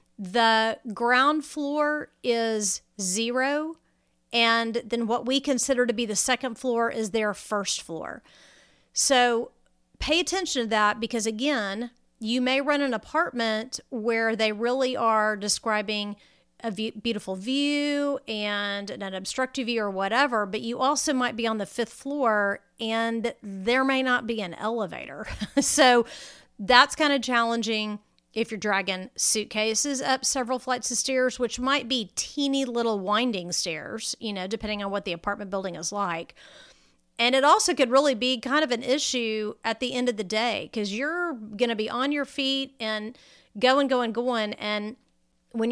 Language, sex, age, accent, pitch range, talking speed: English, female, 40-59, American, 215-260 Hz, 160 wpm